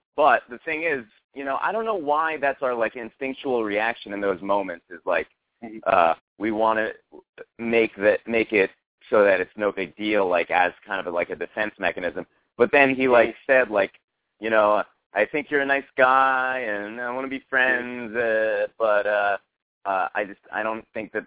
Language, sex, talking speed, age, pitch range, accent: English, male, 205 wpm, 30-49, 105-135 Hz, American